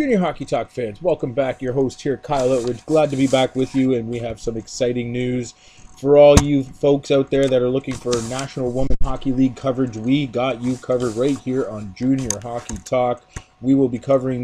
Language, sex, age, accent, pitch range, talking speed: English, male, 30-49, American, 120-140 Hz, 220 wpm